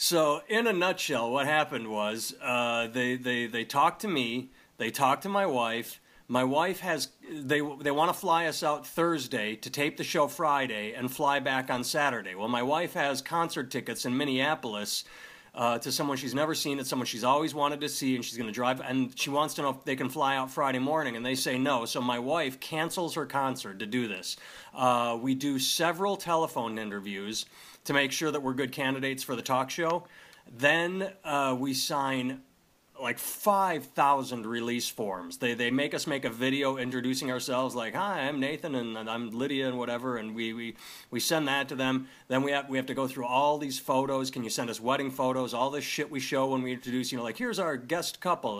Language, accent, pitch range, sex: English, American, 125-145 Hz, male